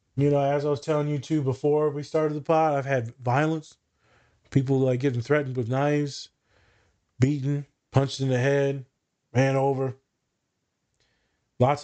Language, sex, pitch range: English, male, 125-145 Hz